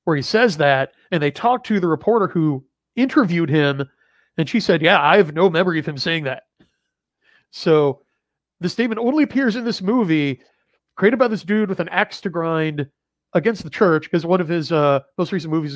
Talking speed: 200 wpm